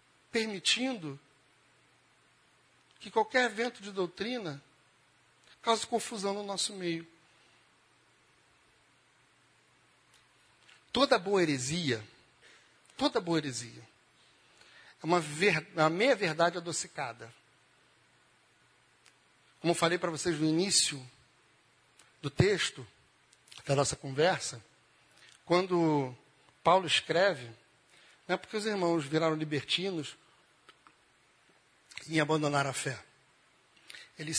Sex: male